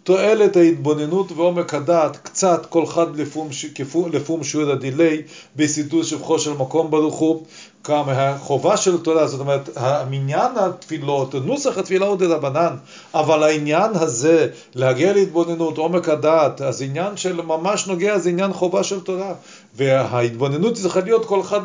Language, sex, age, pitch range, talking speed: Hebrew, male, 40-59, 140-175 Hz, 140 wpm